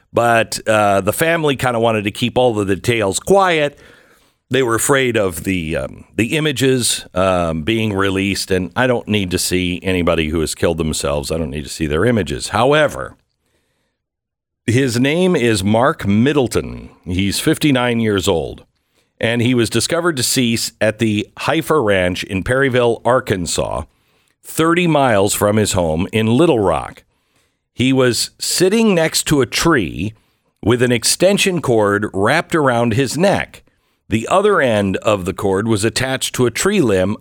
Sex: male